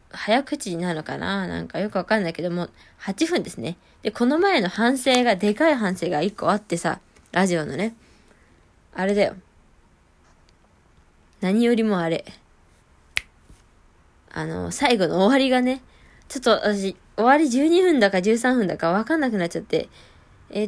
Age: 20-39